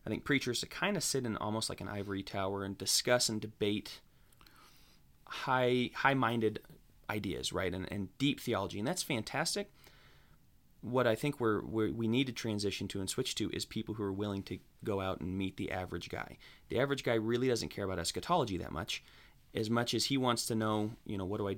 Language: English